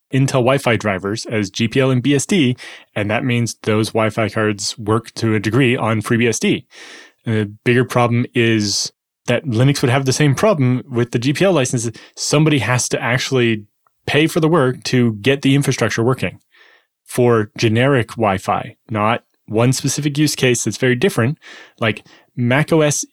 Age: 20-39